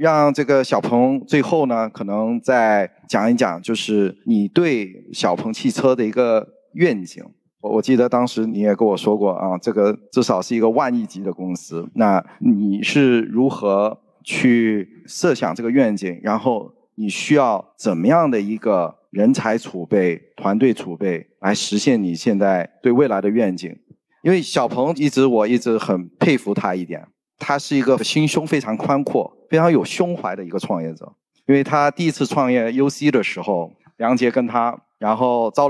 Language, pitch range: Chinese, 105-140 Hz